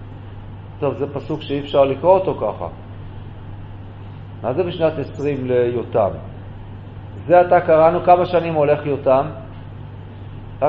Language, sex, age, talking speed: Hebrew, male, 50-69, 120 wpm